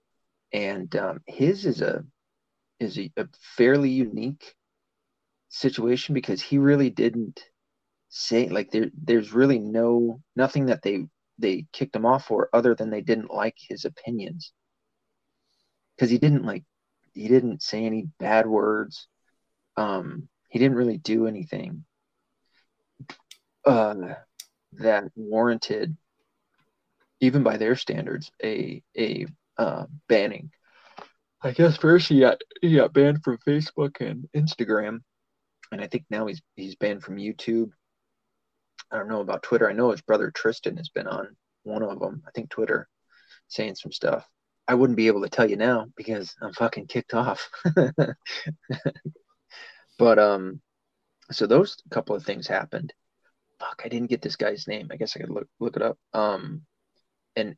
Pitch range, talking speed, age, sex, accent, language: 110-140 Hz, 150 wpm, 30-49, male, American, English